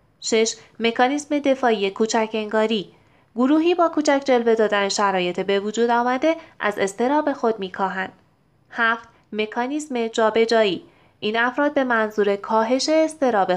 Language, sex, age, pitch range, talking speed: Persian, female, 20-39, 200-255 Hz, 125 wpm